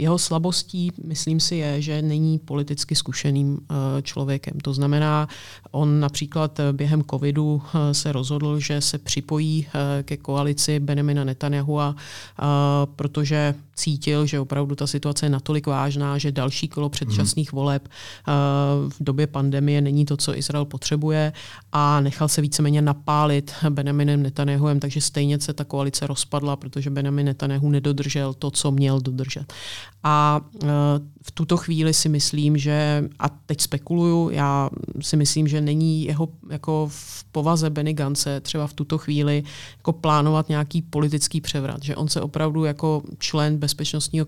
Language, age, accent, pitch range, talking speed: Czech, 30-49, native, 140-150 Hz, 140 wpm